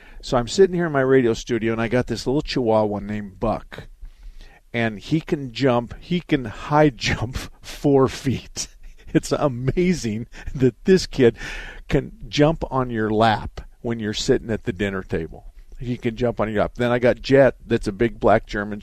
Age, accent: 50-69, American